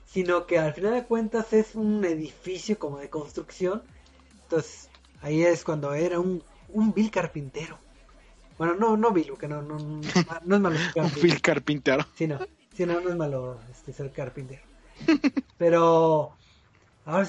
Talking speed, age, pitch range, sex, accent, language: 145 wpm, 30-49, 150-190 Hz, male, Mexican, Spanish